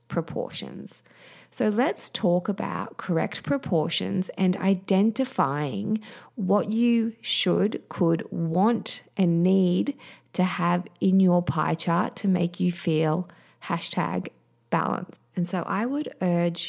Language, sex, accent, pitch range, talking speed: English, female, Australian, 165-195 Hz, 120 wpm